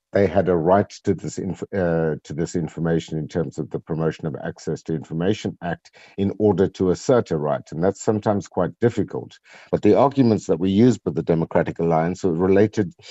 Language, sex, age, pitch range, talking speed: English, male, 50-69, 80-100 Hz, 195 wpm